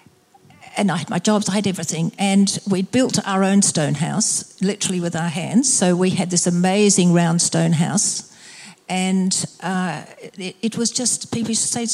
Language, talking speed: English, 190 wpm